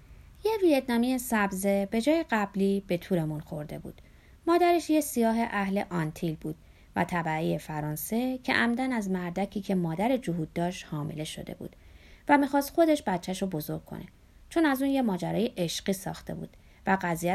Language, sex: Persian, female